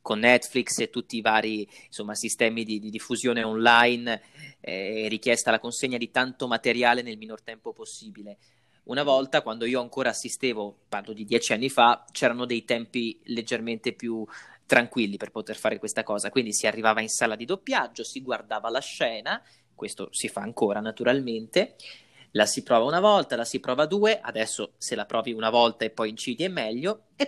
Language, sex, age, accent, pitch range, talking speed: Italian, male, 20-39, native, 115-135 Hz, 185 wpm